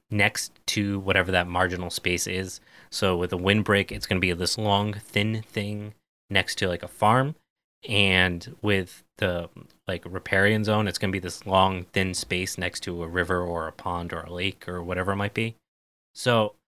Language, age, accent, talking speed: English, 20-39, American, 195 wpm